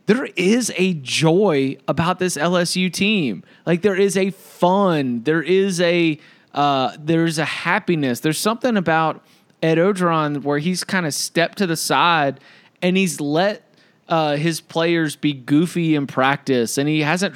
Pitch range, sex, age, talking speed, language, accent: 140-170 Hz, male, 20-39, 160 wpm, English, American